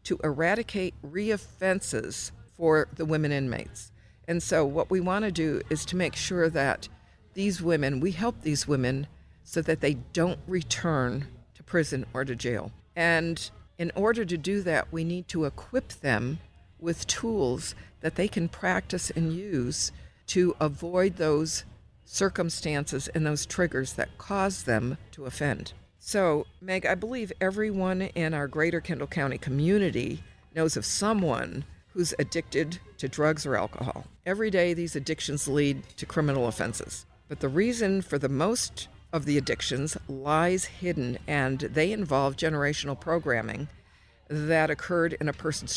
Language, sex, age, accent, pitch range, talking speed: English, female, 50-69, American, 135-175 Hz, 150 wpm